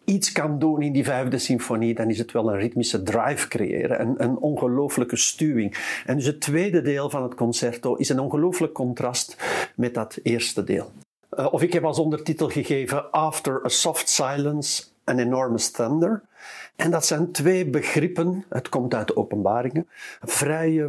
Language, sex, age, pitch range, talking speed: English, male, 50-69, 125-165 Hz, 170 wpm